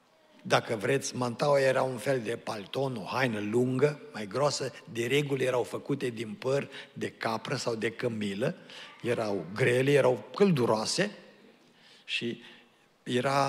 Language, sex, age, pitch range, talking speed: Romanian, male, 50-69, 120-140 Hz, 135 wpm